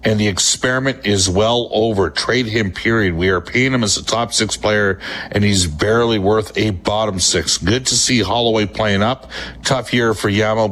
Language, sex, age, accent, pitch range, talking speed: English, male, 50-69, American, 100-120 Hz, 195 wpm